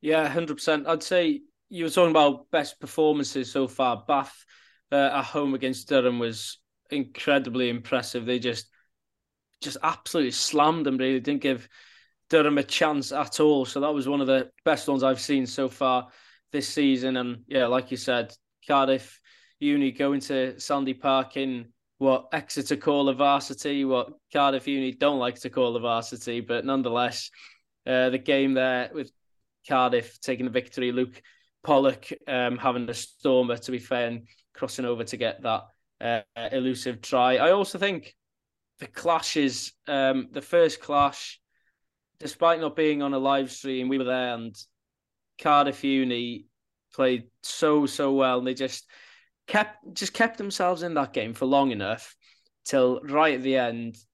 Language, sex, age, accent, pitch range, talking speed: English, male, 20-39, British, 125-145 Hz, 165 wpm